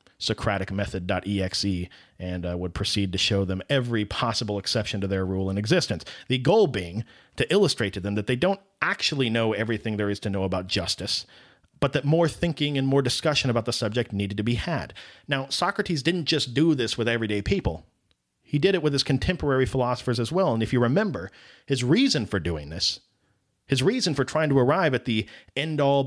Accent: American